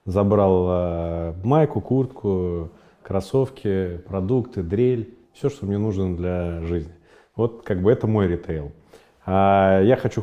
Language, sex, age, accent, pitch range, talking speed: Russian, male, 30-49, native, 90-105 Hz, 125 wpm